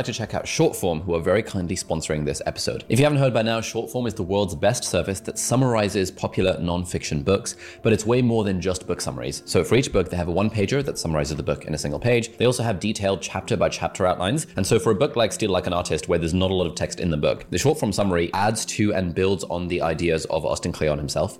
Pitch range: 85-110 Hz